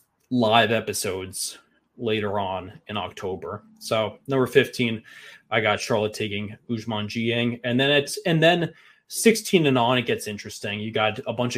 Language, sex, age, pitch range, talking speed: English, male, 20-39, 110-125 Hz, 155 wpm